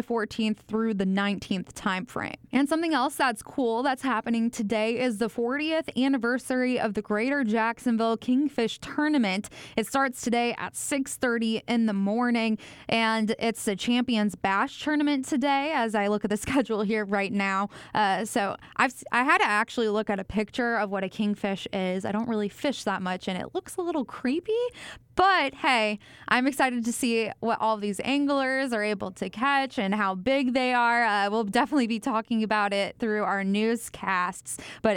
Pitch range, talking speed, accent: 215-255 Hz, 185 wpm, American